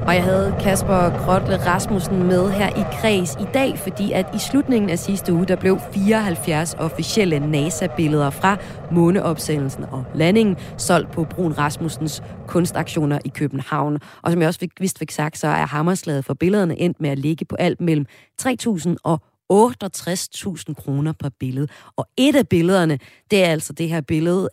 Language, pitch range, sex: Danish, 150-195 Hz, female